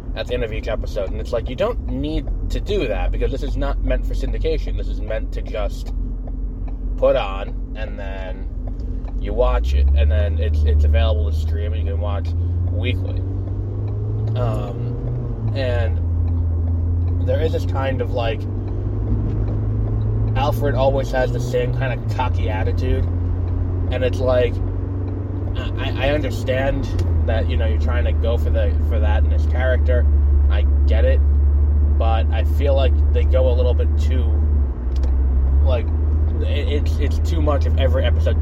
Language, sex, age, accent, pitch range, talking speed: English, male, 20-39, American, 75-95 Hz, 160 wpm